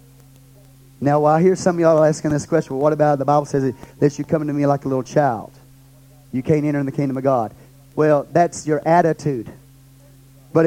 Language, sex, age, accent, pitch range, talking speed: English, male, 40-59, American, 135-220 Hz, 215 wpm